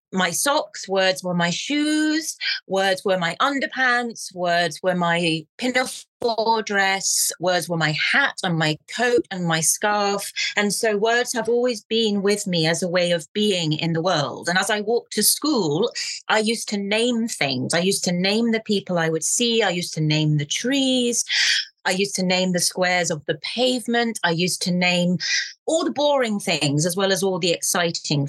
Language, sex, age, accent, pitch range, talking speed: Italian, female, 30-49, British, 170-225 Hz, 190 wpm